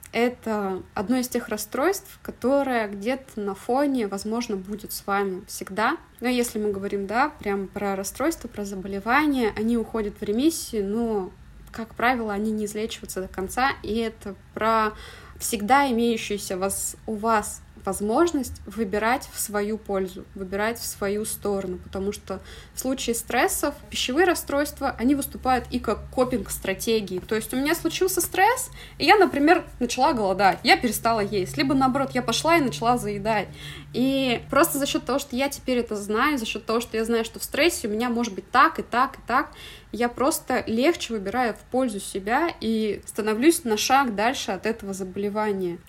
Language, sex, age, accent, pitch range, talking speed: Russian, female, 20-39, native, 205-255 Hz, 170 wpm